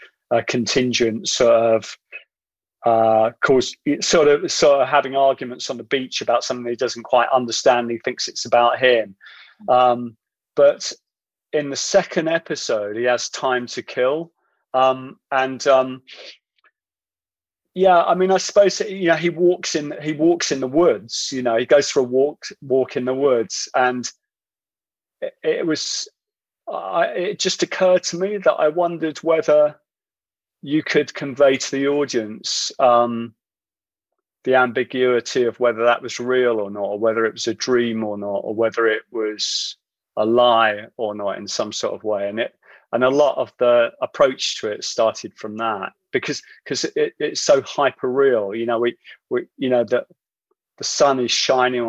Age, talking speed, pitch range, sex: 30-49, 170 wpm, 115-155 Hz, male